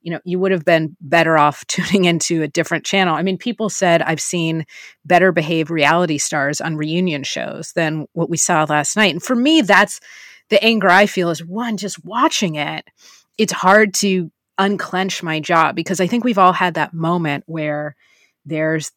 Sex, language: female, English